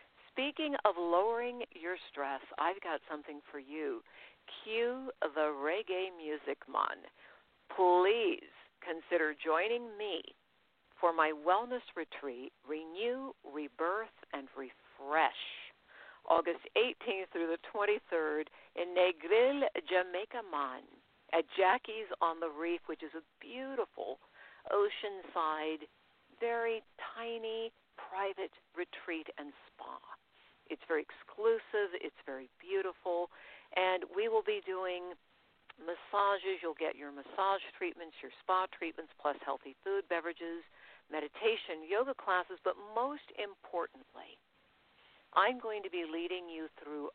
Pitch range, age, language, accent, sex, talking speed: 165-230 Hz, 50-69, English, American, female, 115 wpm